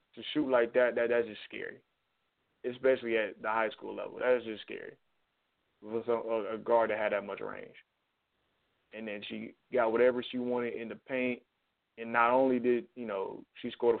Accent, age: American, 20-39